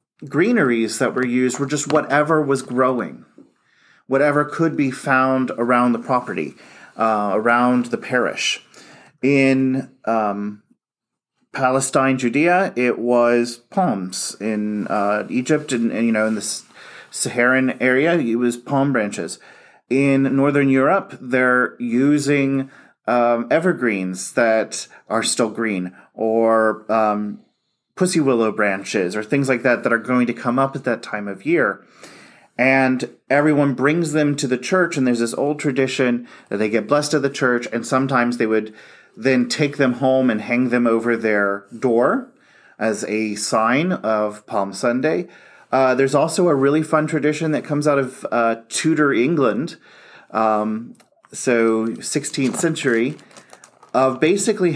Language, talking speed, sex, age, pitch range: English, 145 wpm, male, 30-49, 115-140 Hz